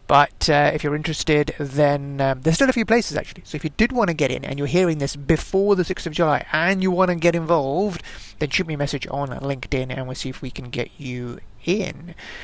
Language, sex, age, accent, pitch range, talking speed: English, male, 30-49, British, 140-165 Hz, 250 wpm